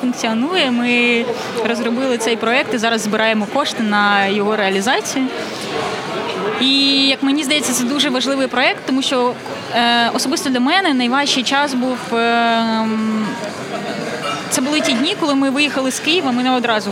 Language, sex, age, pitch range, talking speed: Ukrainian, female, 20-39, 220-265 Hz, 140 wpm